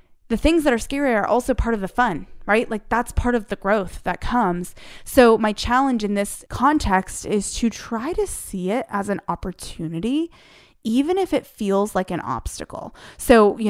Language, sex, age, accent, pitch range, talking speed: English, female, 20-39, American, 180-230 Hz, 195 wpm